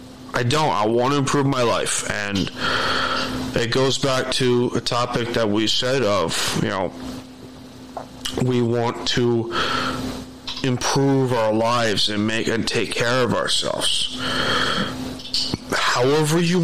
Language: English